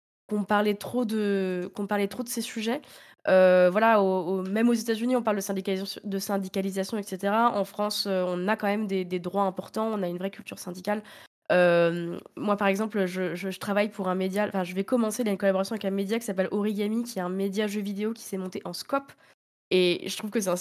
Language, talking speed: French, 250 wpm